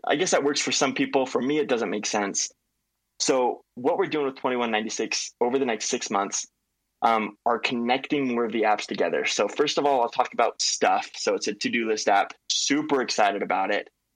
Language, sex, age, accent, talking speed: English, male, 20-39, American, 230 wpm